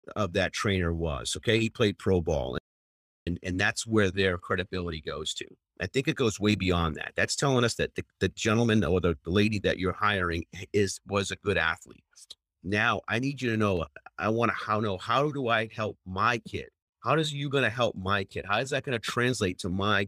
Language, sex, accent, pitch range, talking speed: English, male, American, 90-115 Hz, 225 wpm